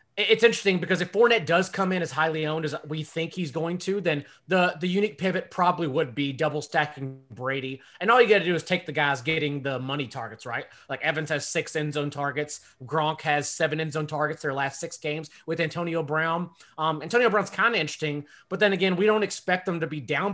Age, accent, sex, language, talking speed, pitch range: 30-49, American, male, English, 235 wpm, 145-180 Hz